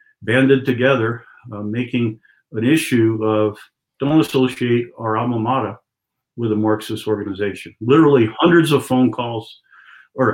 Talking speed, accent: 130 wpm, American